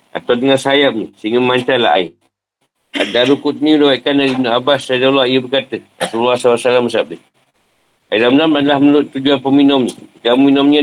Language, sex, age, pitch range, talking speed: Malay, male, 50-69, 115-135 Hz, 150 wpm